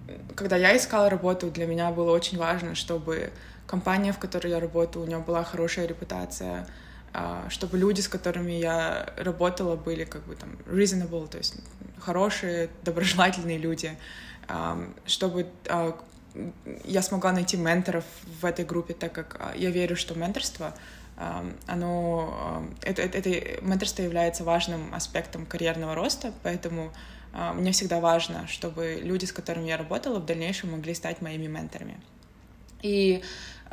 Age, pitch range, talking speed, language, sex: 20-39, 165-185 Hz, 130 wpm, Russian, female